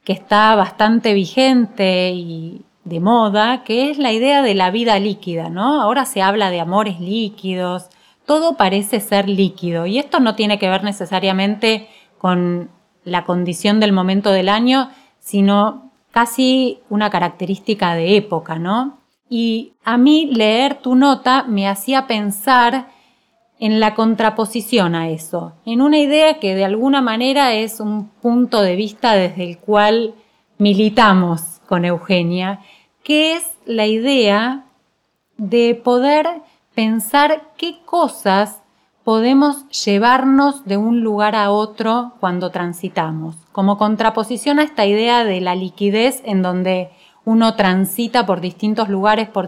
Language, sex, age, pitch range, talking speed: Spanish, female, 20-39, 195-245 Hz, 135 wpm